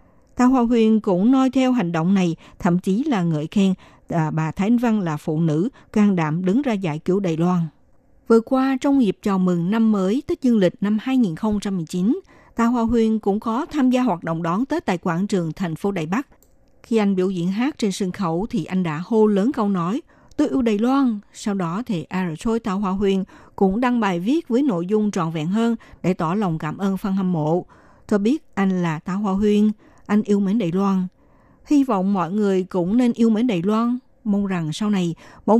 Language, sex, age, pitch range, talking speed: Vietnamese, female, 60-79, 175-230 Hz, 225 wpm